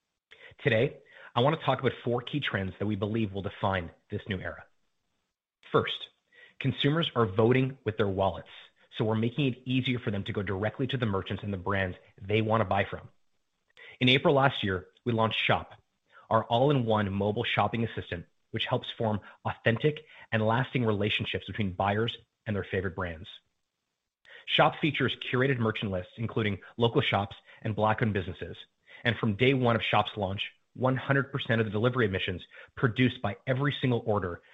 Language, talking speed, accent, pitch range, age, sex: English, 170 wpm, American, 100-125 Hz, 30-49, male